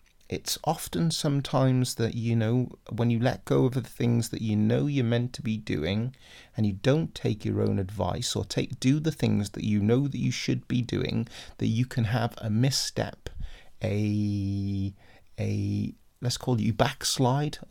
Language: English